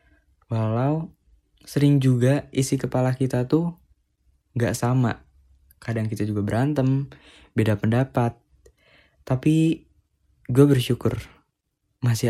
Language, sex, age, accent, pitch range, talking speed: Indonesian, male, 20-39, native, 100-115 Hz, 95 wpm